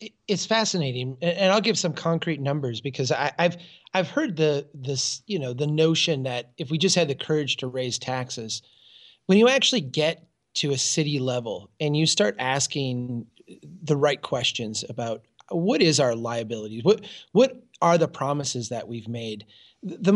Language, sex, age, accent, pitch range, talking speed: English, male, 30-49, American, 130-175 Hz, 170 wpm